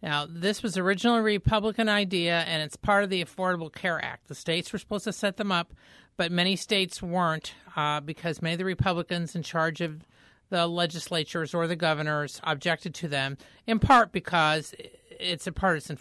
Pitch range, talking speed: 155-195 Hz, 185 wpm